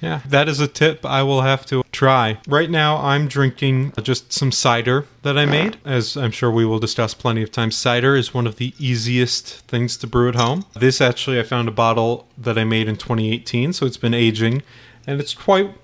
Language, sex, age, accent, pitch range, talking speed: English, male, 30-49, American, 115-140 Hz, 220 wpm